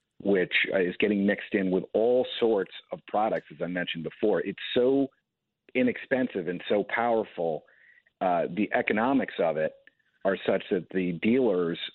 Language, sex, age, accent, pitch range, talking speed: English, male, 50-69, American, 100-135 Hz, 150 wpm